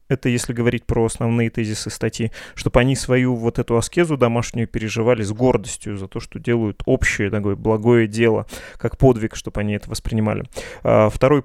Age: 20-39